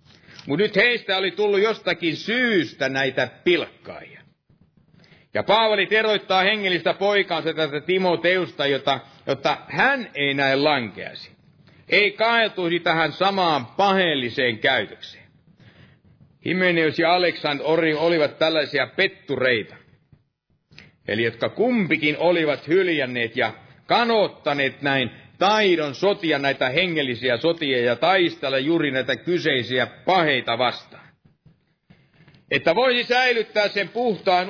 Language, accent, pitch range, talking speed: Finnish, native, 140-190 Hz, 105 wpm